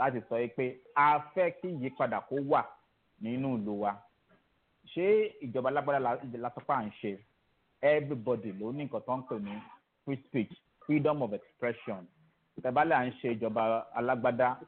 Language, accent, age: English, Nigerian, 40-59